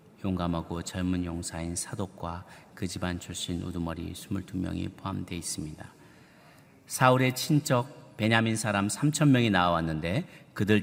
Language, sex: Korean, male